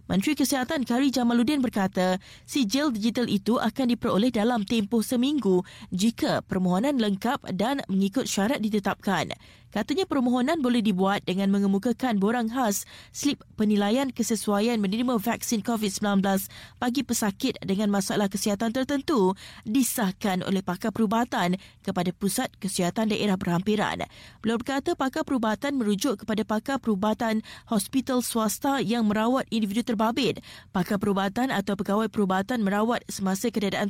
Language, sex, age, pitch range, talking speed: Malay, female, 20-39, 200-245 Hz, 125 wpm